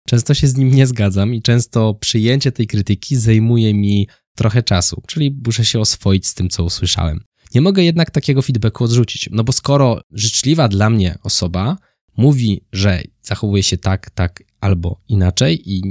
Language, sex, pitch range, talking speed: Polish, male, 100-135 Hz, 170 wpm